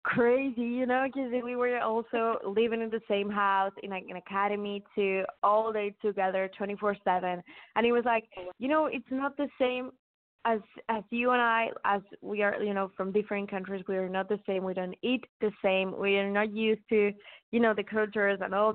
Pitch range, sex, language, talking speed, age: 190-225 Hz, female, English, 210 wpm, 20-39